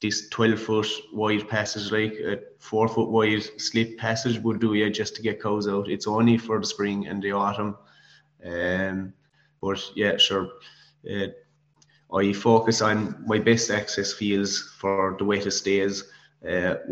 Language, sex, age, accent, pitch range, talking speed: English, male, 20-39, Irish, 100-110 Hz, 160 wpm